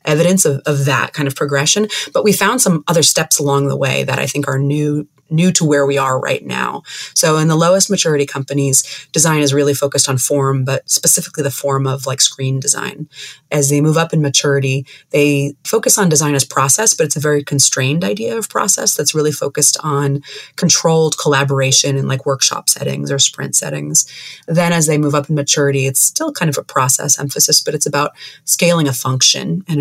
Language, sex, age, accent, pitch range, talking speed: English, female, 30-49, American, 140-160 Hz, 205 wpm